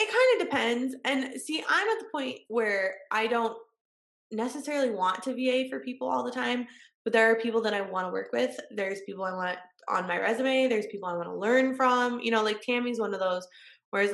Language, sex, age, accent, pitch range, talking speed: English, female, 20-39, American, 195-260 Hz, 230 wpm